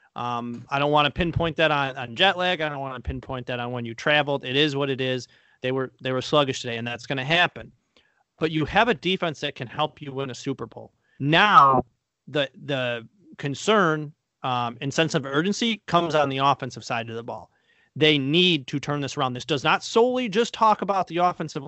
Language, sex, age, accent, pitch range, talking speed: English, male, 30-49, American, 135-180 Hz, 225 wpm